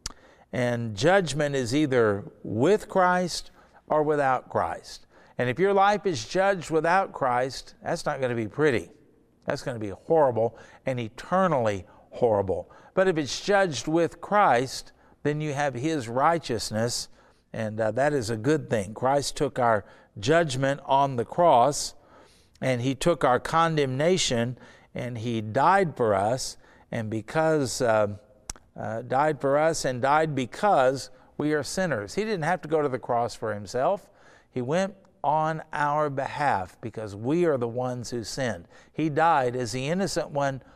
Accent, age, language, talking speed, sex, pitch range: American, 60-79, English, 160 wpm, male, 120-160 Hz